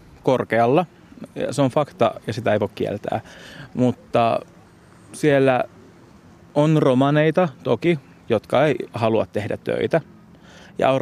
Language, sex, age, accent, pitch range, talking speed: Finnish, male, 30-49, native, 115-150 Hz, 115 wpm